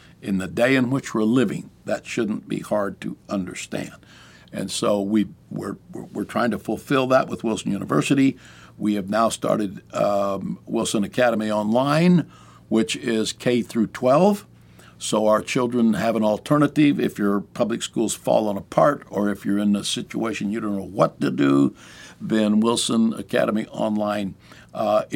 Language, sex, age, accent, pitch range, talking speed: English, male, 60-79, American, 100-125 Hz, 155 wpm